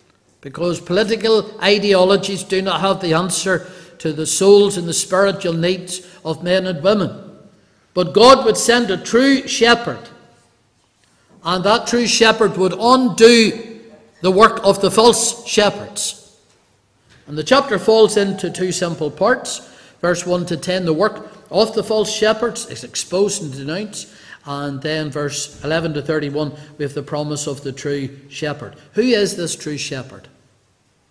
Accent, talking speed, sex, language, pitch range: Irish, 150 wpm, male, English, 160-195 Hz